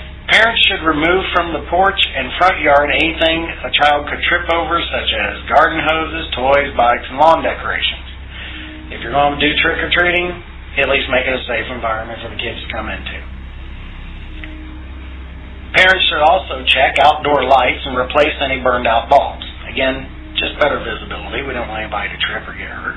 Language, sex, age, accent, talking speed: English, male, 40-59, American, 175 wpm